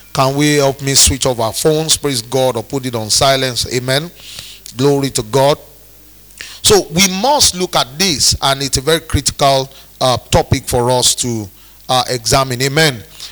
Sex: male